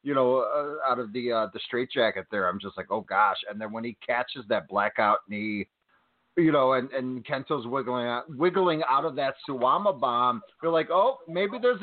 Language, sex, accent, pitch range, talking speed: English, male, American, 125-160 Hz, 215 wpm